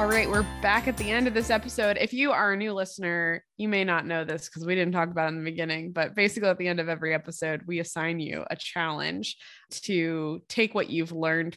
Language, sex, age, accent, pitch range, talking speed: English, female, 20-39, American, 165-215 Hz, 250 wpm